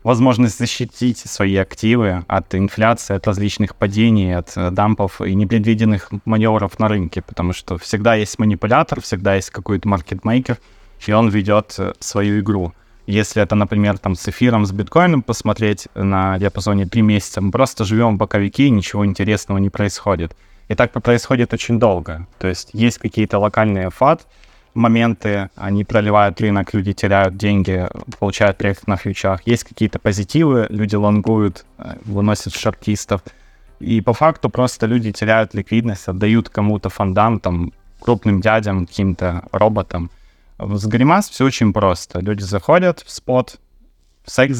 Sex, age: male, 20-39